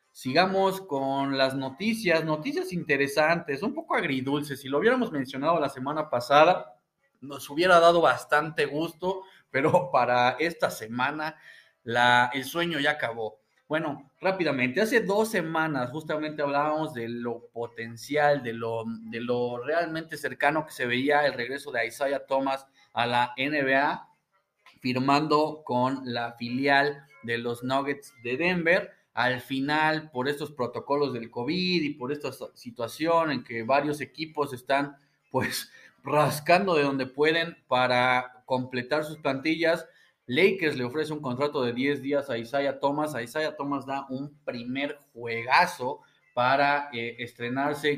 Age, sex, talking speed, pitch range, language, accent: 30-49, male, 135 wpm, 125-155 Hz, Spanish, Mexican